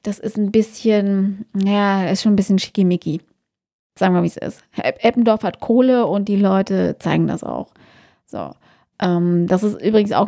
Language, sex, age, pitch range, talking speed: German, female, 20-39, 195-230 Hz, 175 wpm